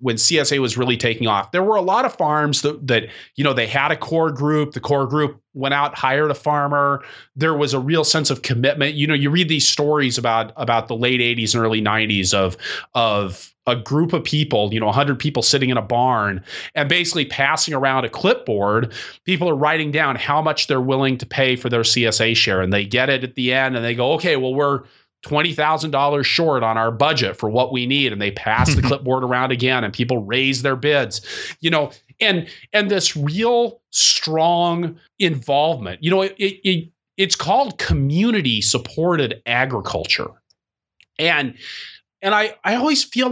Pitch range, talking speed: 120-160 Hz, 195 wpm